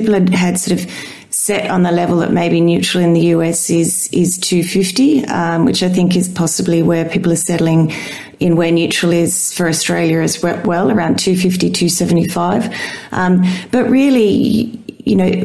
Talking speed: 165 wpm